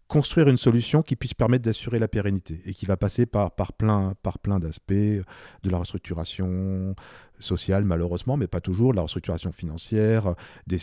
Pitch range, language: 95-115 Hz, French